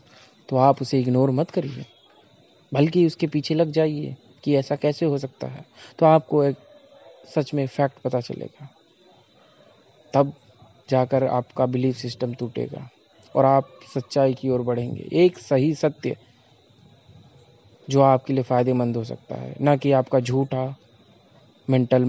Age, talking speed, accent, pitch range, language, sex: 20-39, 140 wpm, native, 125-145 Hz, Hindi, male